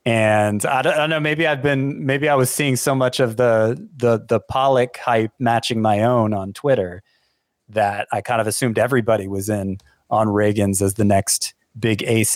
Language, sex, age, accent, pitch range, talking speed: English, male, 30-49, American, 110-135 Hz, 205 wpm